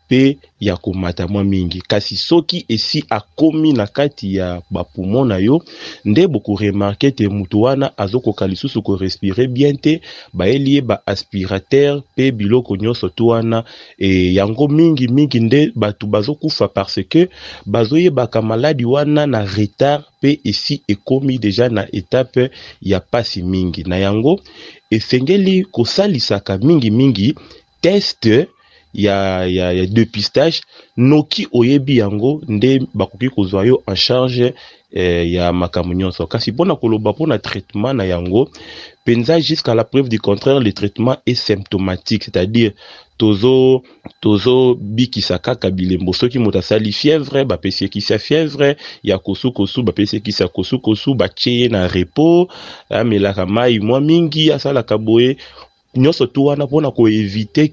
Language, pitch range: English, 100-135 Hz